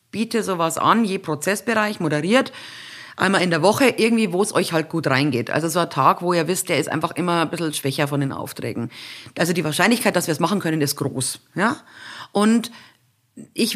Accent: German